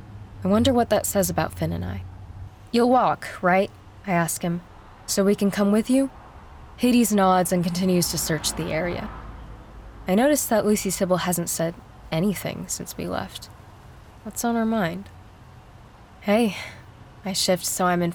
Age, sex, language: 20-39, female, English